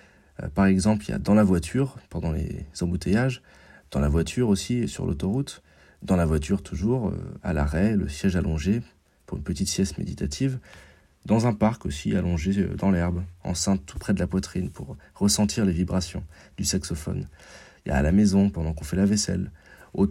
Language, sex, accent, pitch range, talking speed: French, male, French, 85-100 Hz, 185 wpm